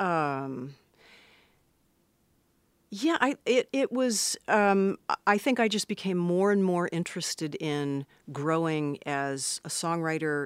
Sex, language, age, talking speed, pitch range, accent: female, English, 50-69, 120 wpm, 145-185 Hz, American